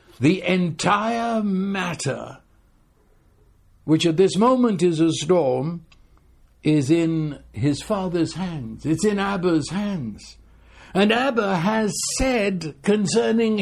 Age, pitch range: 60-79, 130-210 Hz